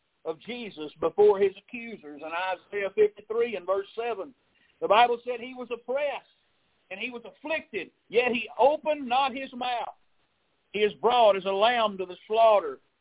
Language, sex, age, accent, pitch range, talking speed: English, male, 50-69, American, 200-270 Hz, 165 wpm